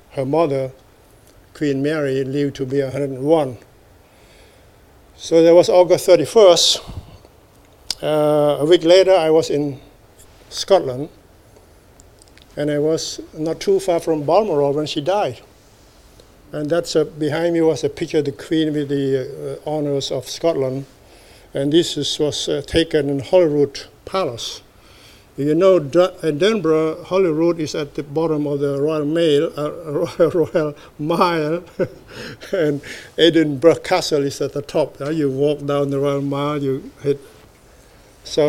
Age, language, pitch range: 50-69, English, 135-160 Hz